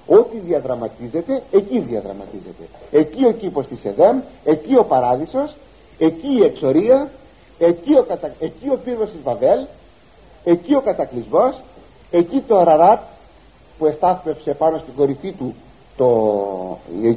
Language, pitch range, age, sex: Greek, 140-205 Hz, 50-69, male